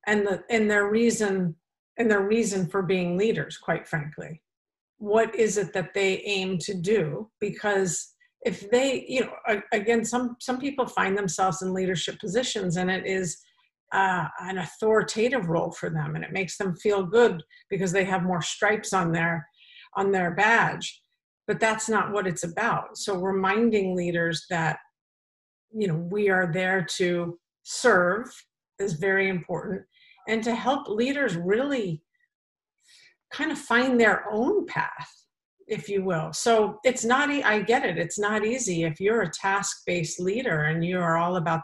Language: English